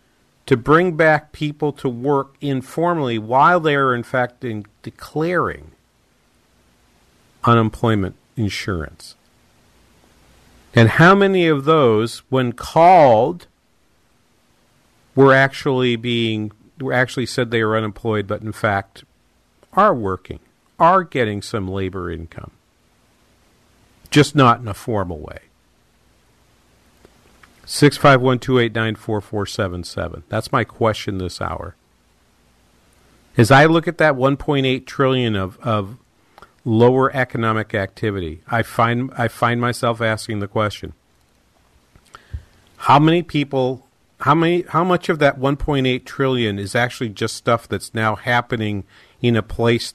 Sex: male